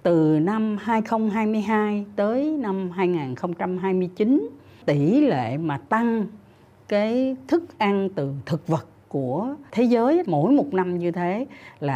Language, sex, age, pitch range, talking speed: Vietnamese, female, 60-79, 150-215 Hz, 125 wpm